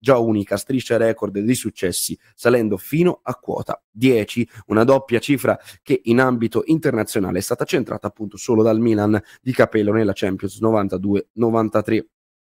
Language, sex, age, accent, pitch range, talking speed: Italian, male, 20-39, native, 105-120 Hz, 145 wpm